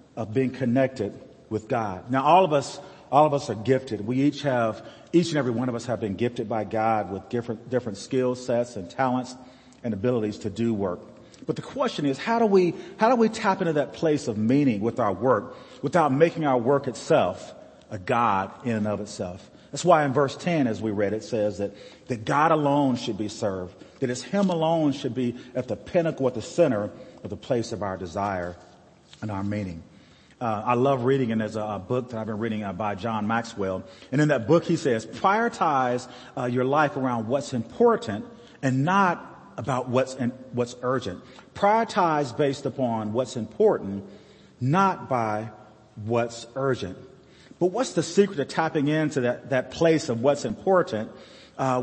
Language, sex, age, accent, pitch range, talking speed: English, male, 40-59, American, 115-155 Hz, 195 wpm